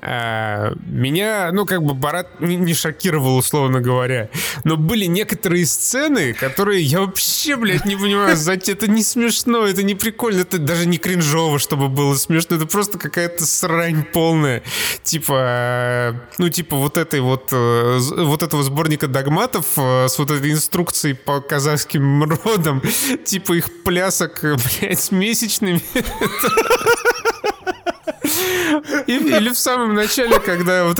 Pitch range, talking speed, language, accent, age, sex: 140-185 Hz, 130 wpm, Russian, native, 20-39, male